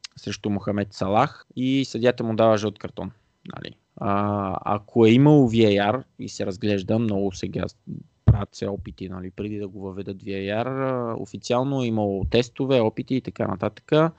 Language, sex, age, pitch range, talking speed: Bulgarian, male, 20-39, 105-135 Hz, 140 wpm